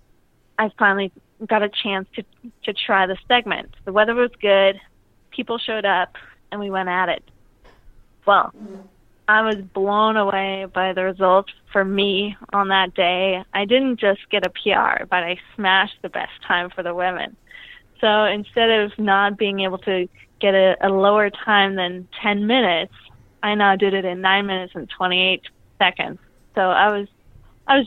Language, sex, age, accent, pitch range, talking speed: English, female, 20-39, American, 195-225 Hz, 170 wpm